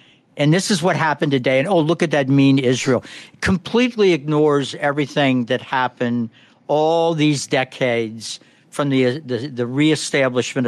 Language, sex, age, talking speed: English, male, 60-79, 145 wpm